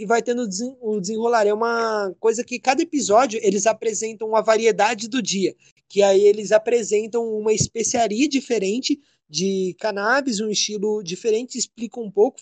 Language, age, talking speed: Portuguese, 20-39, 155 wpm